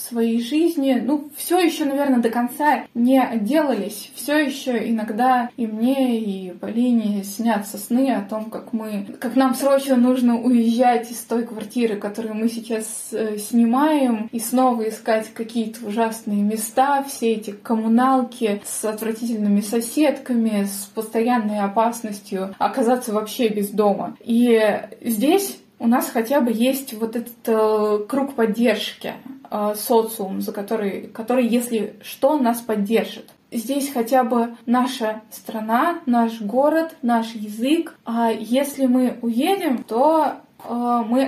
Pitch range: 220-260 Hz